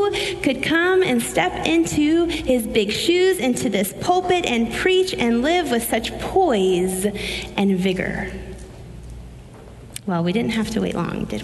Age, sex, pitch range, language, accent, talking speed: 30-49, female, 190-275 Hz, English, American, 145 wpm